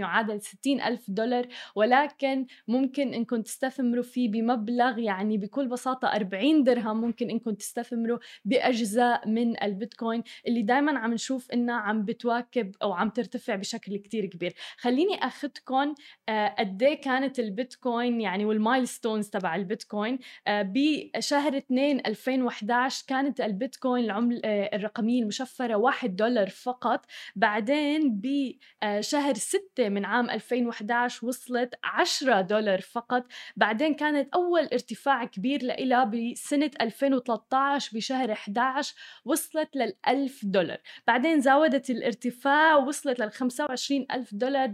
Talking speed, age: 115 wpm, 10-29